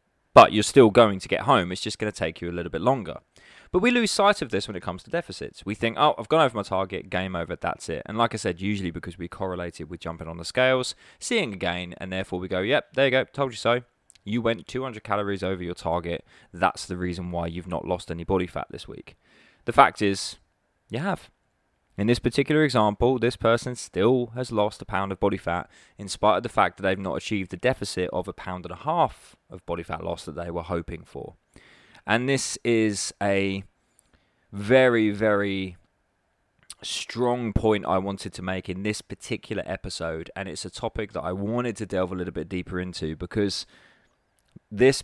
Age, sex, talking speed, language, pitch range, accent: 20-39, male, 220 wpm, English, 90-115 Hz, British